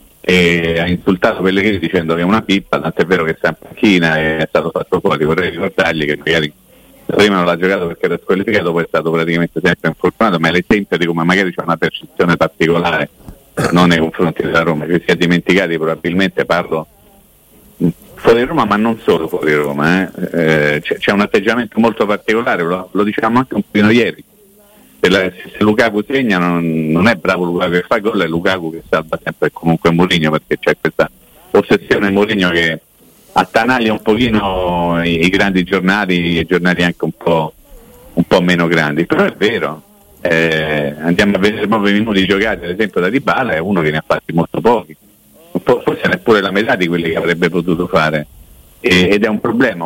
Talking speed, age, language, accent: 190 wpm, 50-69, Italian, native